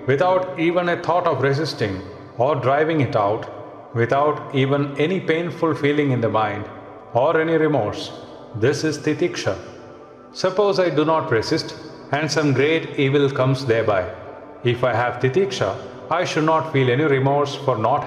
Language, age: English, 40-59